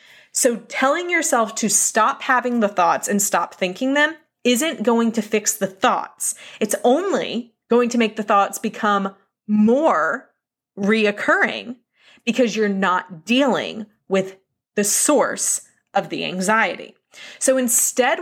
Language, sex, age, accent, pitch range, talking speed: English, female, 20-39, American, 185-240 Hz, 130 wpm